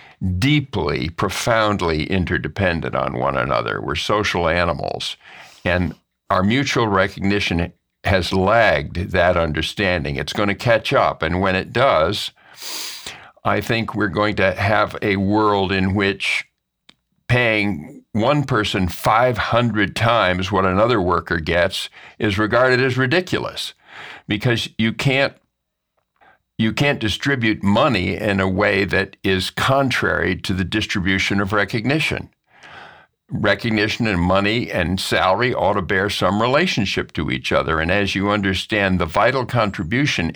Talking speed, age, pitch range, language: 130 wpm, 50-69, 95-115 Hz, English